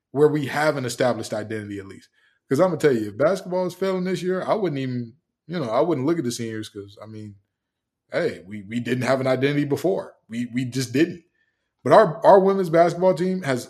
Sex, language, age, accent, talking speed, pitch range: male, English, 20-39, American, 230 wpm, 125-165 Hz